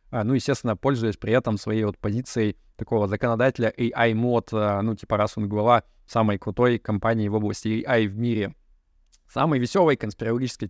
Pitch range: 110-130 Hz